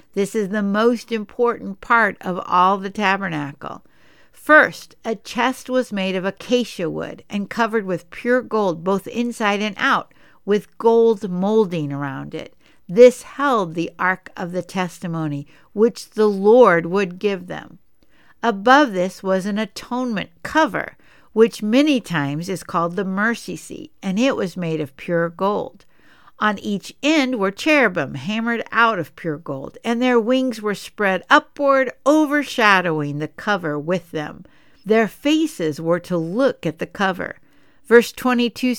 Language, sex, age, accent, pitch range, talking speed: English, female, 60-79, American, 175-240 Hz, 150 wpm